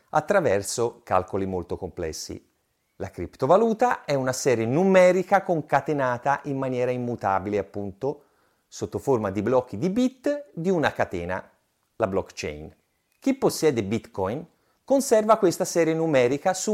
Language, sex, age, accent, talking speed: Italian, male, 30-49, native, 120 wpm